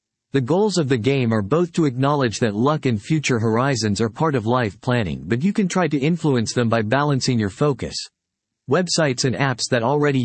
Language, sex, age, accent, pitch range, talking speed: English, male, 40-59, American, 115-150 Hz, 205 wpm